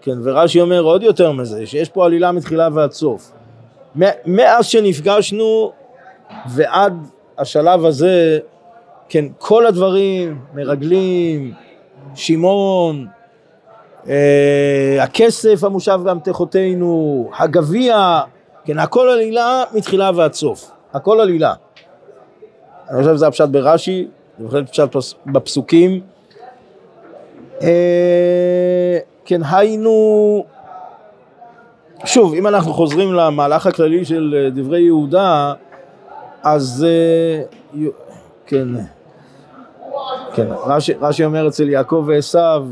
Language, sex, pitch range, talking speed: Hebrew, male, 145-190 Hz, 90 wpm